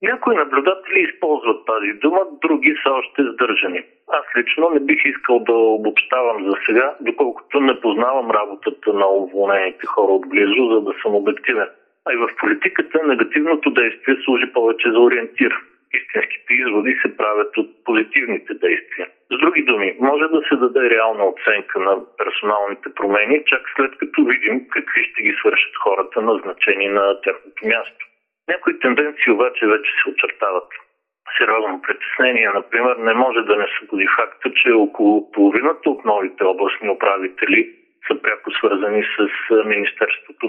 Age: 50-69